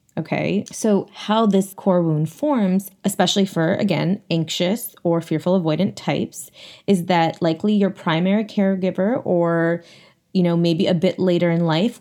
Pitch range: 165-200 Hz